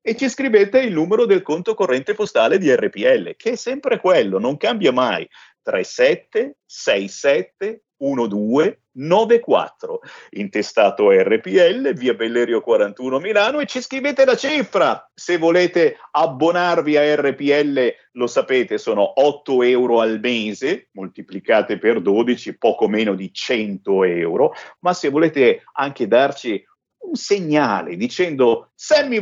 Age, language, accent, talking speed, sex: 50-69, Italian, native, 120 wpm, male